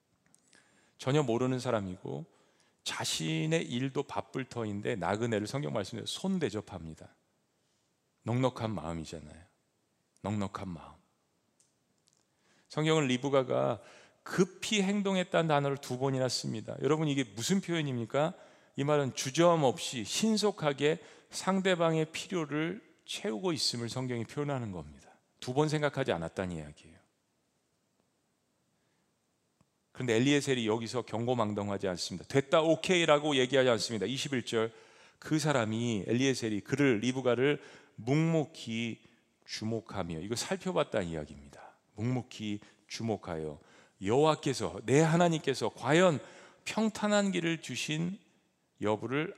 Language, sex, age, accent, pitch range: Korean, male, 40-59, native, 110-155 Hz